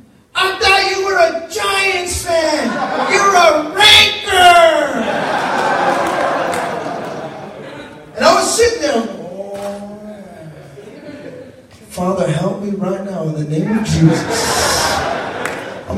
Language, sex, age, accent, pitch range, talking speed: English, male, 30-49, American, 210-340 Hz, 105 wpm